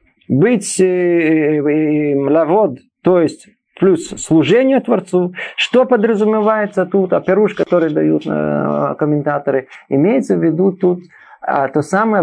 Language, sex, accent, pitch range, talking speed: Russian, male, native, 145-180 Hz, 105 wpm